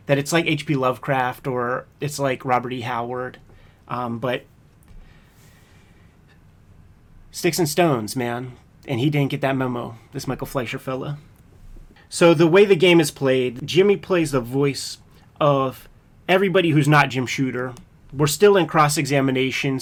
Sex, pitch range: male, 125-150 Hz